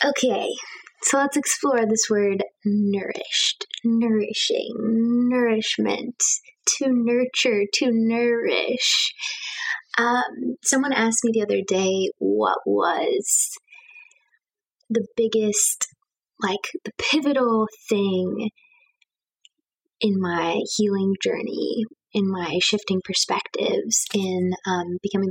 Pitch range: 210-310 Hz